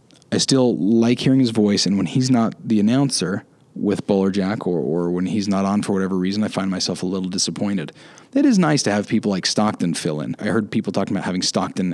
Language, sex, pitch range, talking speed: English, male, 95-125 Hz, 230 wpm